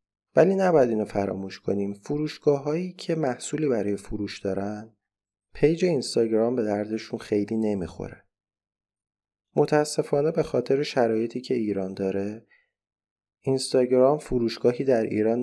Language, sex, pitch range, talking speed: Persian, male, 100-130 Hz, 115 wpm